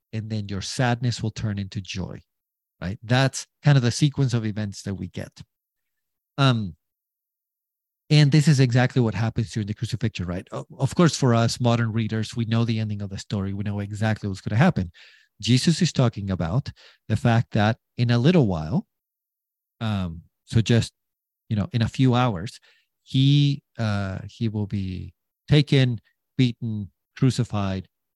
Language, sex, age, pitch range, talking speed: English, male, 40-59, 105-130 Hz, 165 wpm